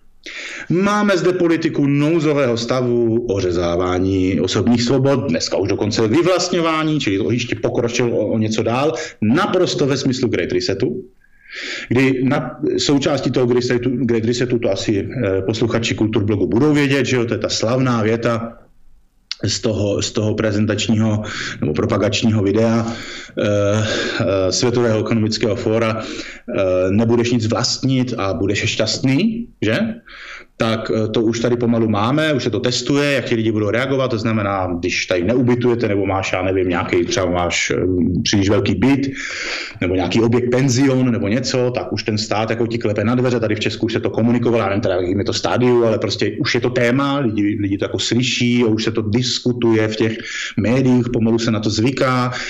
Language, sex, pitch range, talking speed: Slovak, male, 110-130 Hz, 165 wpm